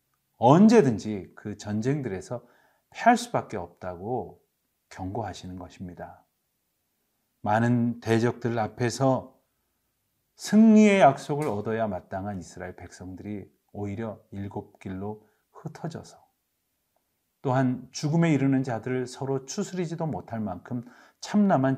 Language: Korean